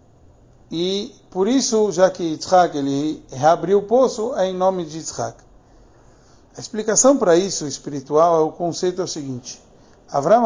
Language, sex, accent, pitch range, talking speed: Portuguese, male, Brazilian, 150-200 Hz, 155 wpm